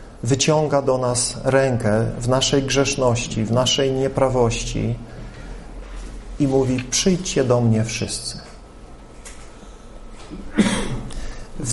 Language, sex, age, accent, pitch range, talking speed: Polish, male, 40-59, native, 115-140 Hz, 85 wpm